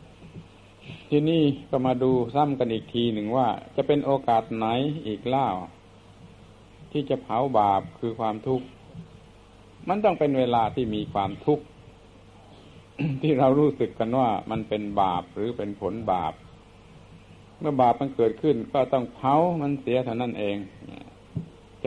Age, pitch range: 60-79, 105-135 Hz